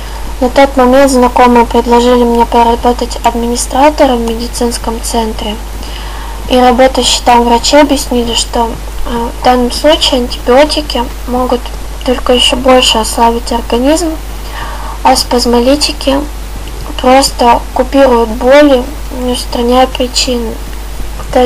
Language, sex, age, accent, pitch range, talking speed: Russian, female, 20-39, native, 235-265 Hz, 100 wpm